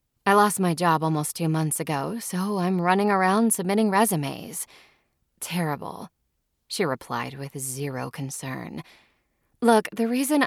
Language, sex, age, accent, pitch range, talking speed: English, female, 20-39, American, 135-195 Hz, 130 wpm